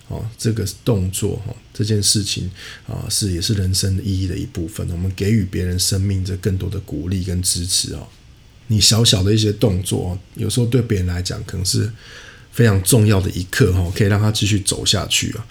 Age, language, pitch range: 20-39, Chinese, 95-115 Hz